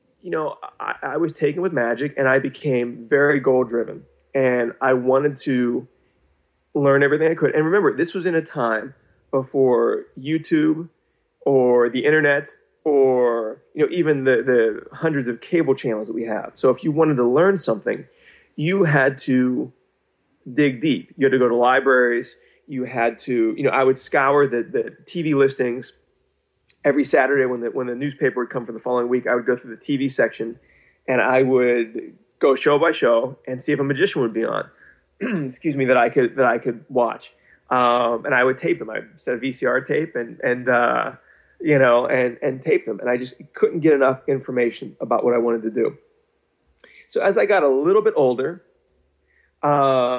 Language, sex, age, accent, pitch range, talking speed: English, male, 30-49, American, 125-155 Hz, 195 wpm